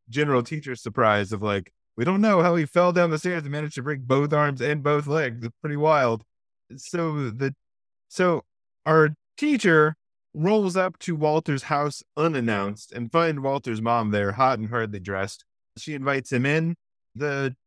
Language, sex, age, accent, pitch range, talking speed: English, male, 30-49, American, 115-150 Hz, 175 wpm